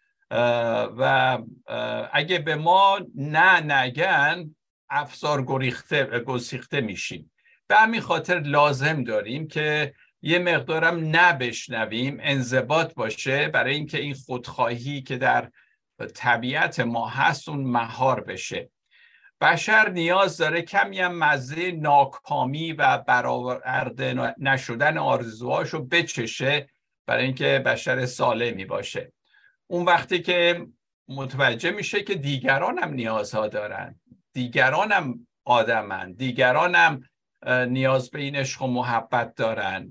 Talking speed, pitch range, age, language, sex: 105 wpm, 130-170 Hz, 60-79, Persian, male